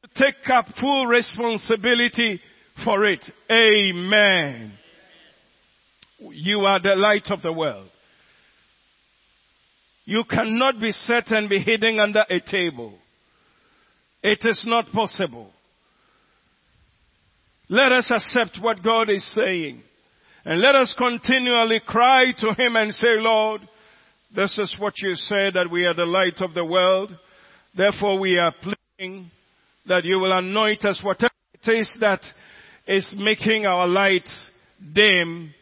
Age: 50-69